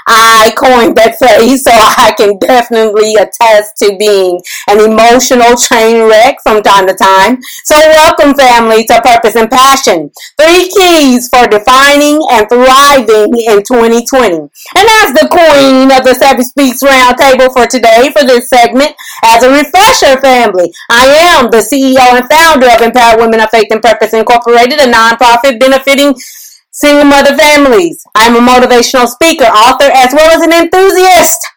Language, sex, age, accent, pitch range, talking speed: English, female, 30-49, American, 235-300 Hz, 155 wpm